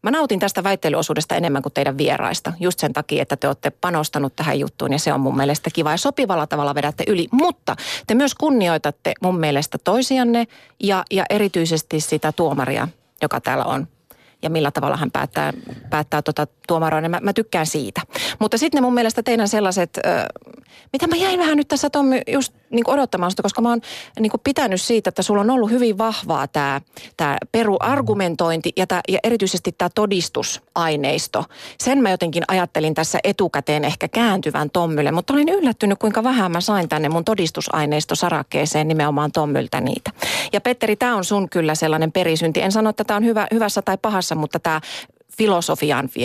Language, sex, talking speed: Finnish, female, 175 wpm